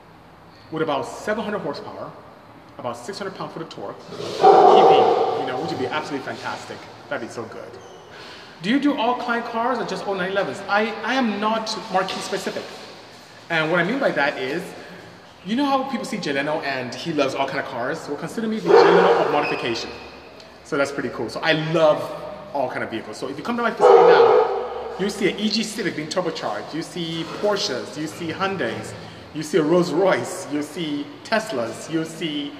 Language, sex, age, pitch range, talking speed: English, male, 30-49, 155-230 Hz, 195 wpm